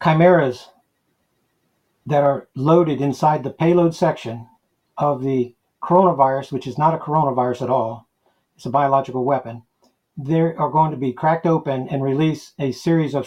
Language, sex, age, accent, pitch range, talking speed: English, male, 50-69, American, 140-170 Hz, 155 wpm